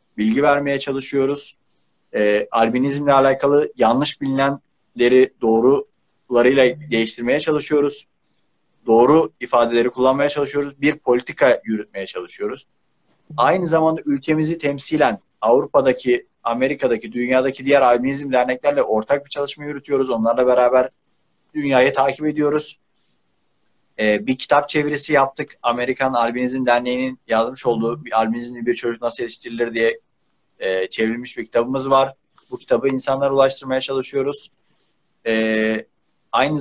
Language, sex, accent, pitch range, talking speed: Turkish, male, native, 120-140 Hz, 105 wpm